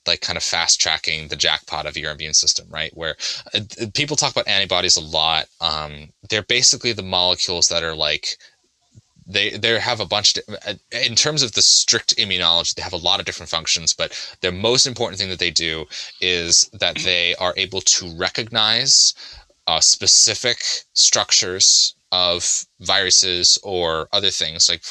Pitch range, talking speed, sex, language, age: 85-105 Hz, 165 wpm, male, English, 20-39